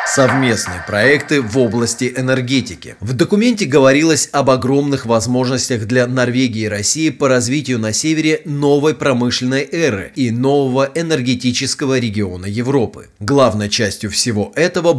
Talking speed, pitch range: 125 wpm, 115-145 Hz